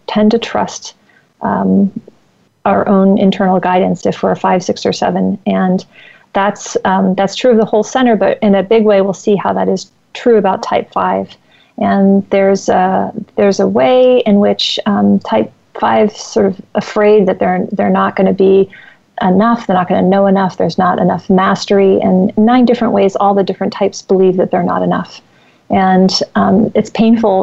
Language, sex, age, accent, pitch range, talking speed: English, female, 40-59, American, 195-220 Hz, 190 wpm